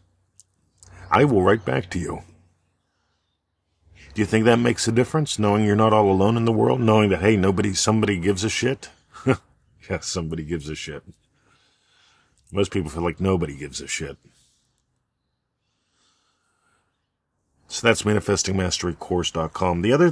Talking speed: 140 wpm